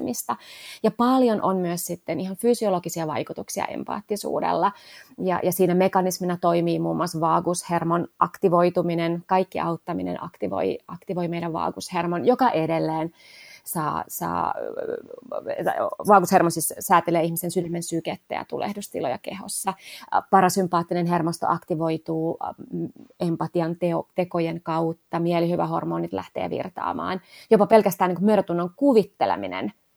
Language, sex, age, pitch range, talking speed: Finnish, female, 30-49, 170-205 Hz, 100 wpm